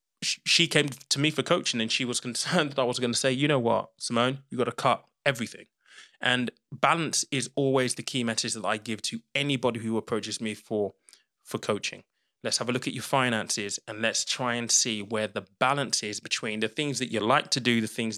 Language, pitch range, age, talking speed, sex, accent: English, 115-135 Hz, 20-39, 230 wpm, male, British